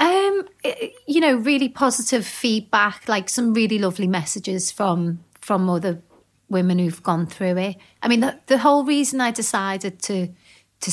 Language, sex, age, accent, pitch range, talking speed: English, female, 30-49, British, 185-230 Hz, 160 wpm